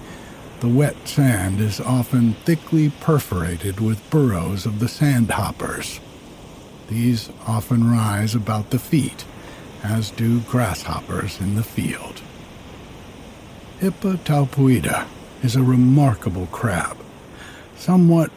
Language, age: English, 60-79